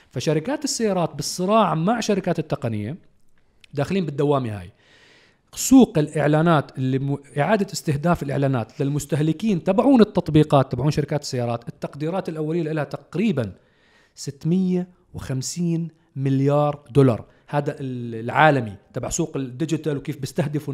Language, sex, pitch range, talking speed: Arabic, male, 140-180 Hz, 100 wpm